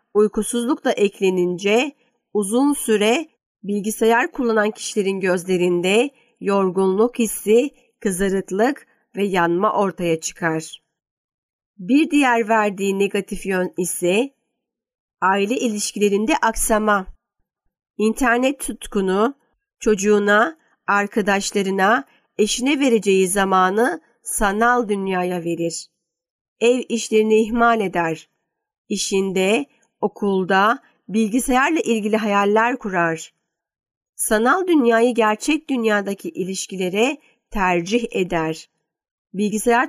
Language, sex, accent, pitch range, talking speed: Turkish, female, native, 195-235 Hz, 80 wpm